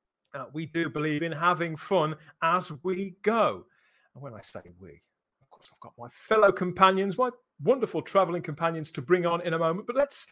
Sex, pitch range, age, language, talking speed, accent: male, 155-215 Hz, 40-59, English, 200 wpm, British